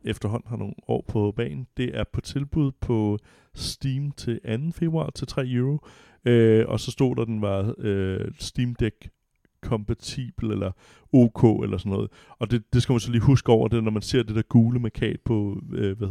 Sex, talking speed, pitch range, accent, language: male, 210 wpm, 100-115 Hz, native, Danish